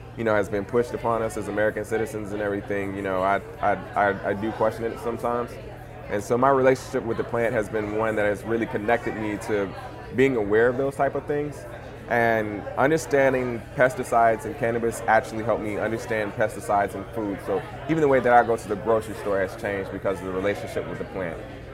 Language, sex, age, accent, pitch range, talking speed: English, male, 20-39, American, 105-125 Hz, 215 wpm